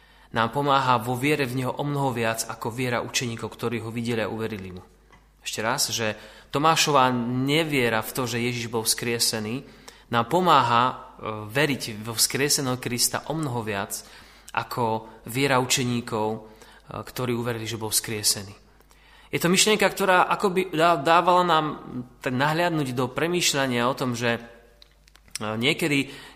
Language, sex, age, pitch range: Slovak, male, 30-49, 115-145 Hz